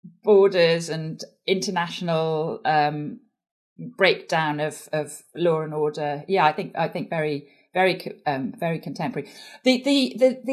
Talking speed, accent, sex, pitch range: 130 wpm, British, female, 165-215 Hz